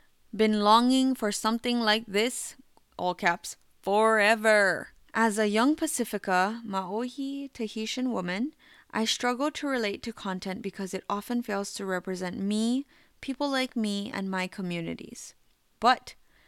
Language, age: English, 20-39